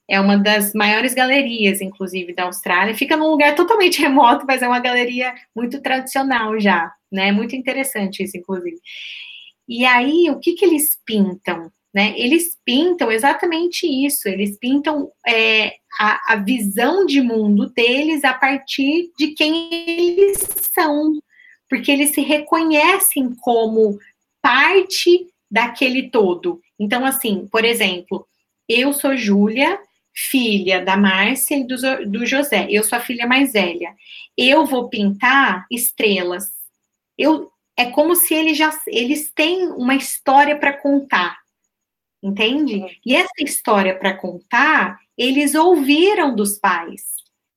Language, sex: Portuguese, female